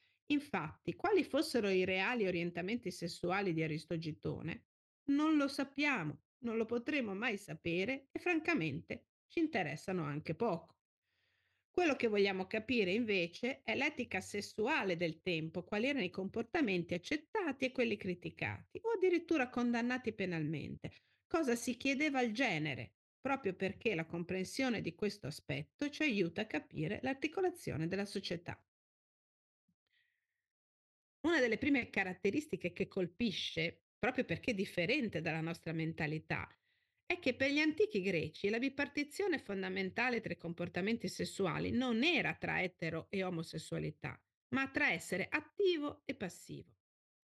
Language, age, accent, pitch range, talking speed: Italian, 50-69, native, 175-290 Hz, 130 wpm